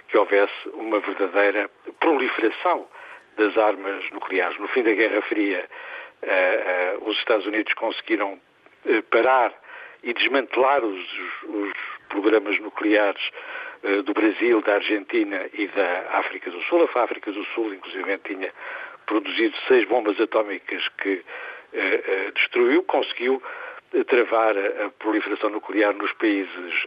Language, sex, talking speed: Portuguese, male, 115 wpm